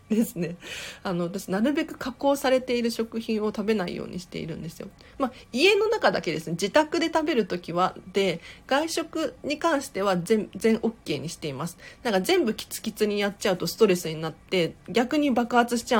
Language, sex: Japanese, female